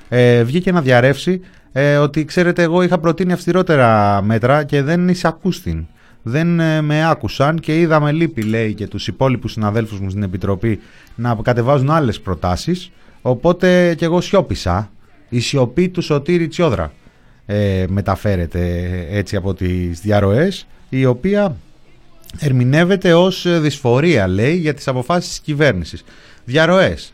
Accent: native